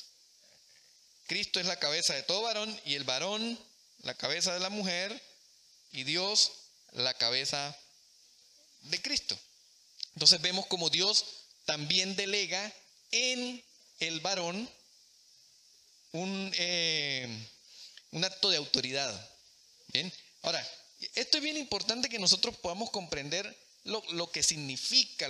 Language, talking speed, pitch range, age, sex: Spanish, 120 wpm, 150-220 Hz, 30-49, male